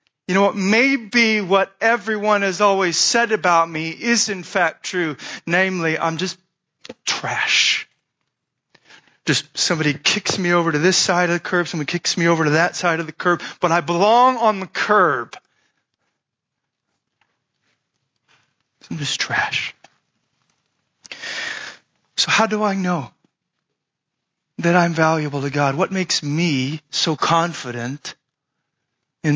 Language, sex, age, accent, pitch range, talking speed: English, male, 40-59, American, 150-195 Hz, 135 wpm